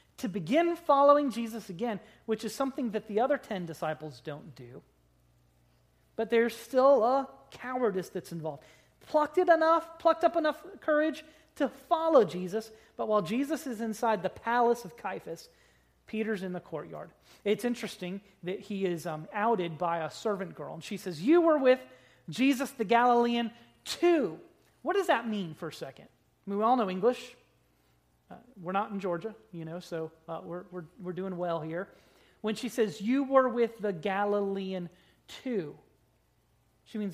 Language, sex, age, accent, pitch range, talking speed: English, male, 30-49, American, 175-250 Hz, 170 wpm